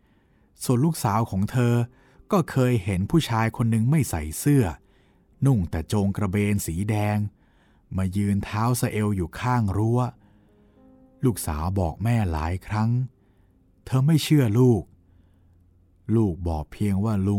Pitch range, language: 90-125 Hz, Thai